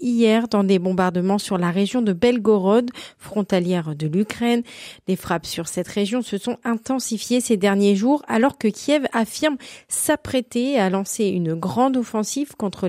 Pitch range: 195-255 Hz